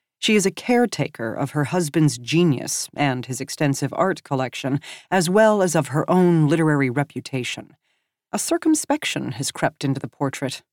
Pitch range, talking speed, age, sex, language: 140-195 Hz, 155 wpm, 40-59, female, English